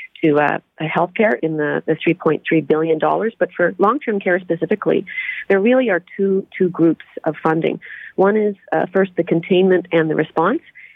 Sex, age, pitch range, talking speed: female, 40-59, 160-180 Hz, 175 wpm